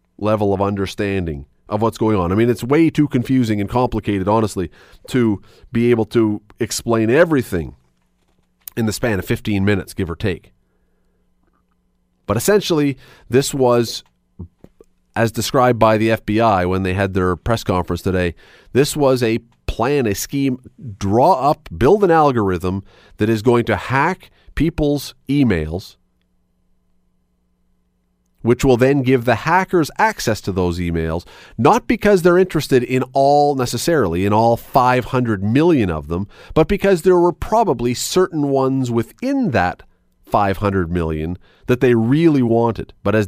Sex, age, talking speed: male, 30-49, 145 wpm